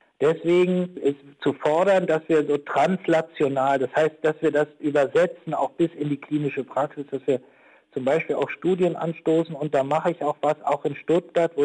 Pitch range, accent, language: 125-155 Hz, German, German